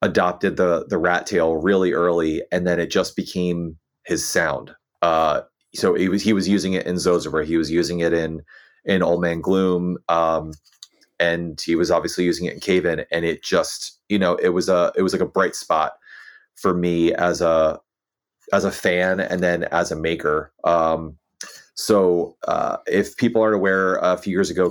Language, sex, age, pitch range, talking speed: English, male, 30-49, 85-95 Hz, 190 wpm